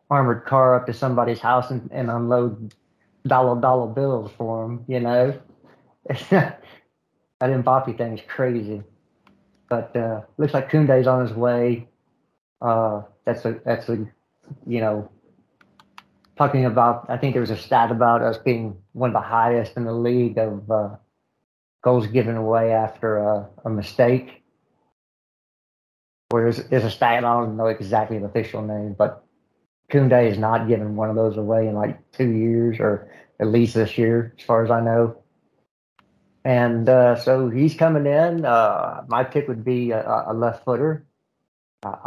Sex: male